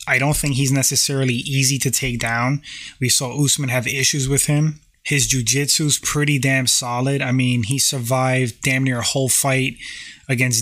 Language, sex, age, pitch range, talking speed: English, male, 20-39, 125-145 Hz, 175 wpm